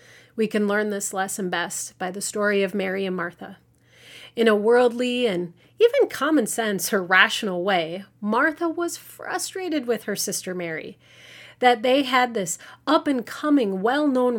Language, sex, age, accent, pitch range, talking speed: English, female, 30-49, American, 185-265 Hz, 150 wpm